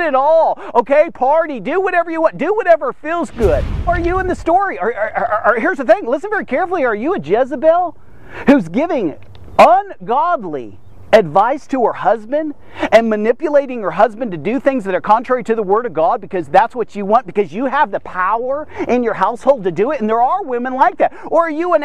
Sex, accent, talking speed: male, American, 205 wpm